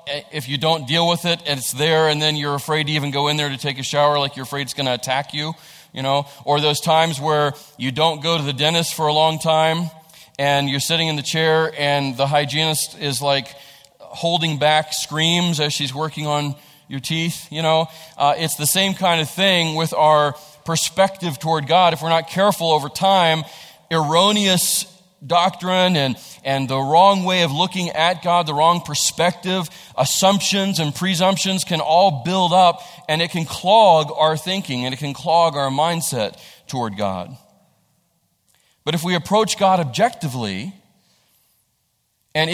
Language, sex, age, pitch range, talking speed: English, male, 40-59, 145-175 Hz, 180 wpm